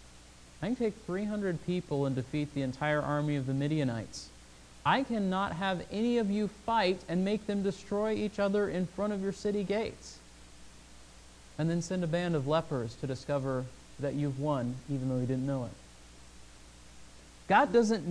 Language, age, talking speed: English, 30-49, 170 wpm